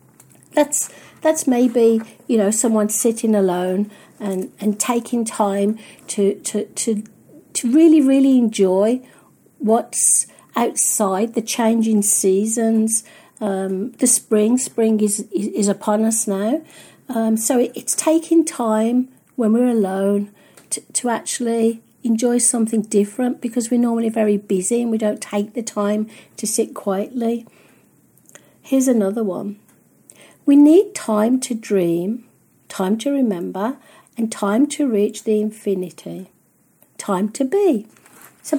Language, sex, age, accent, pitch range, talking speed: English, female, 50-69, British, 205-245 Hz, 130 wpm